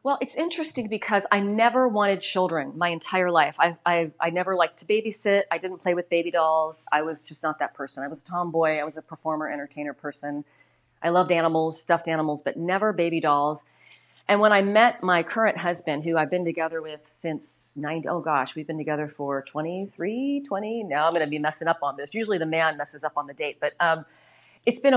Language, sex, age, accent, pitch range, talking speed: English, female, 40-59, American, 155-195 Hz, 220 wpm